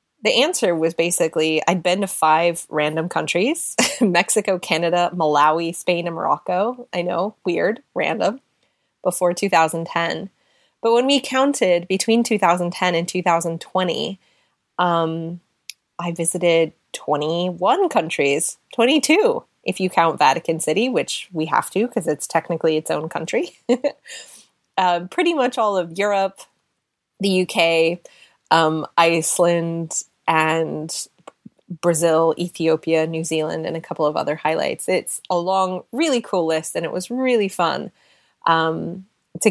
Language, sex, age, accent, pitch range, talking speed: English, female, 20-39, American, 165-205 Hz, 130 wpm